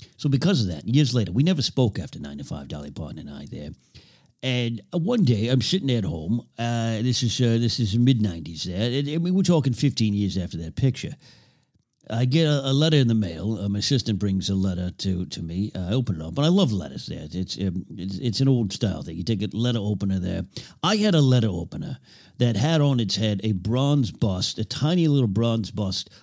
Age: 50-69